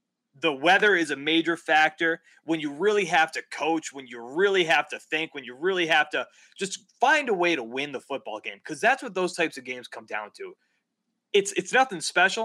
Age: 20-39